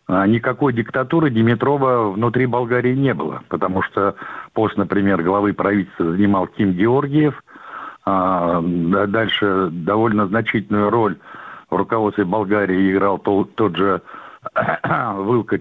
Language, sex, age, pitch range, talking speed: Russian, male, 60-79, 95-125 Hz, 105 wpm